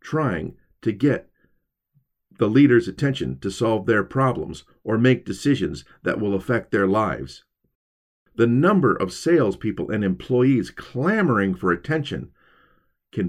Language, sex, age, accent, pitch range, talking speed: English, male, 50-69, American, 100-170 Hz, 125 wpm